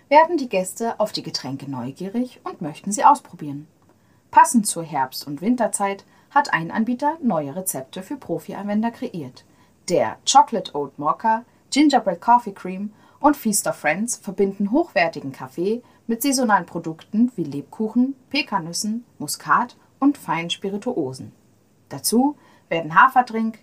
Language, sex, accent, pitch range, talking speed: German, female, German, 160-235 Hz, 130 wpm